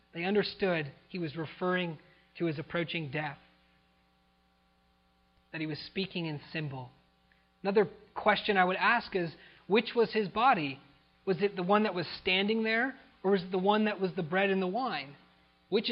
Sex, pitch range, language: male, 145-190 Hz, English